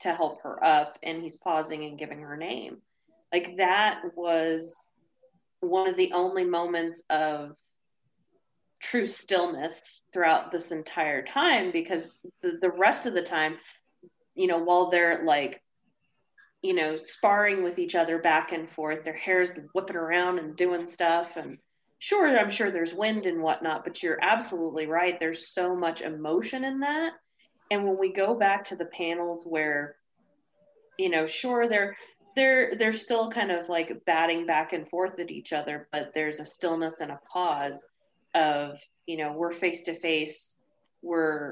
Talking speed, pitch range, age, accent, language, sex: 165 wpm, 155-190 Hz, 30-49, American, English, female